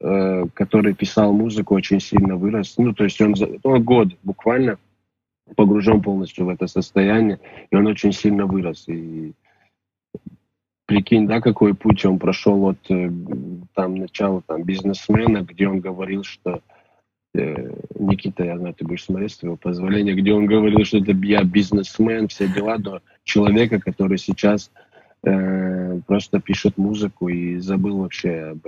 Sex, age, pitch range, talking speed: male, 20-39, 95-105 Hz, 140 wpm